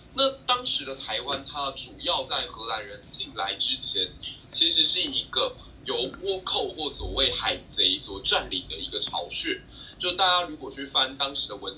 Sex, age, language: male, 20-39, Chinese